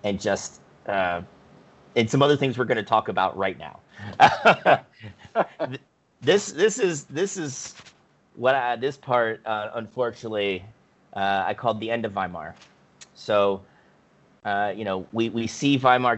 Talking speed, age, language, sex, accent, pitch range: 150 wpm, 30-49, English, male, American, 100-125 Hz